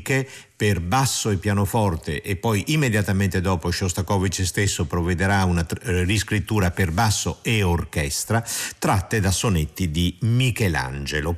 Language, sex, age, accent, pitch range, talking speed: Italian, male, 50-69, native, 85-110 Hz, 120 wpm